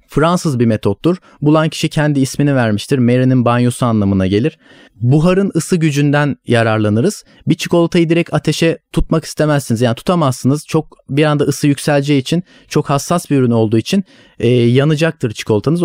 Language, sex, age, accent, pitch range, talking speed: Turkish, male, 30-49, native, 130-170 Hz, 150 wpm